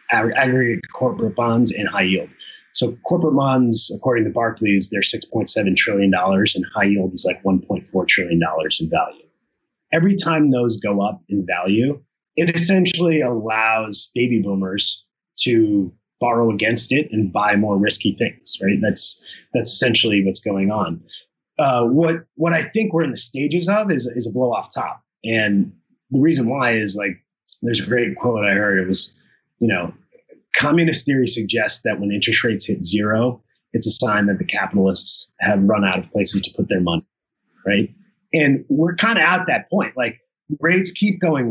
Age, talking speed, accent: 30-49, 175 wpm, American